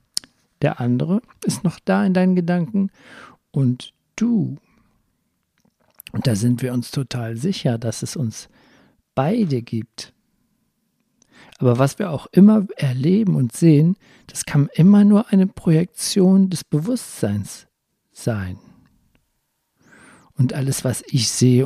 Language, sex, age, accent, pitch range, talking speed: German, male, 50-69, German, 125-180 Hz, 120 wpm